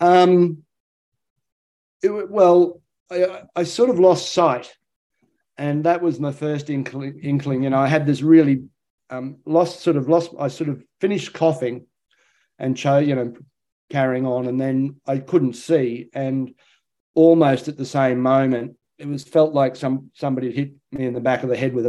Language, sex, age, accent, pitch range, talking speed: English, male, 40-59, Australian, 125-150 Hz, 175 wpm